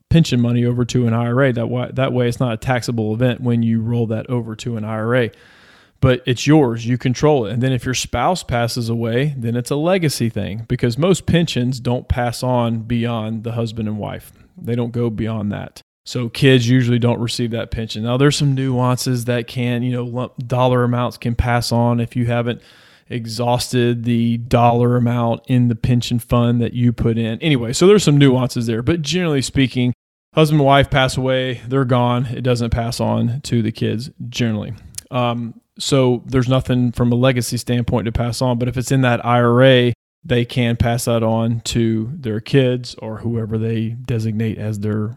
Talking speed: 195 wpm